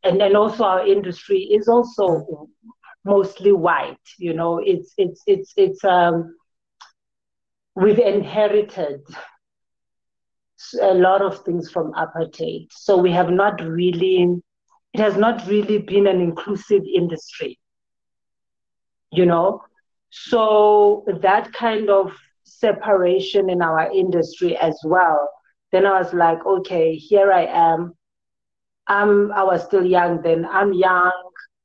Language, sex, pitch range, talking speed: English, female, 165-200 Hz, 125 wpm